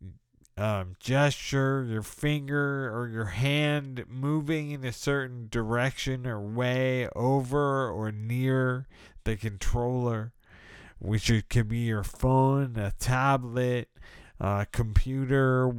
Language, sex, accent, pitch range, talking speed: English, male, American, 115-145 Hz, 115 wpm